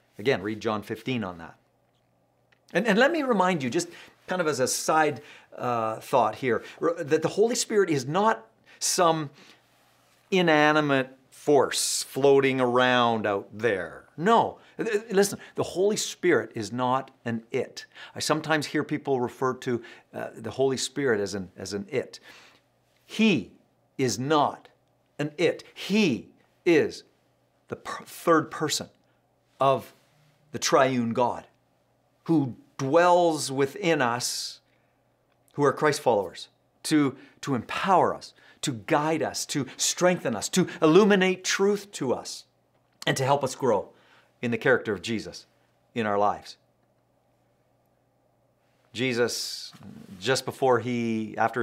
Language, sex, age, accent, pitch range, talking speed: English, male, 50-69, American, 120-165 Hz, 130 wpm